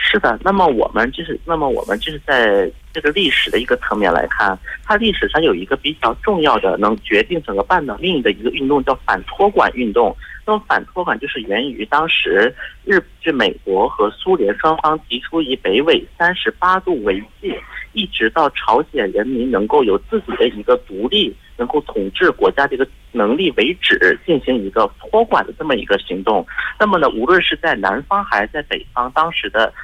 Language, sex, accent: Korean, male, Chinese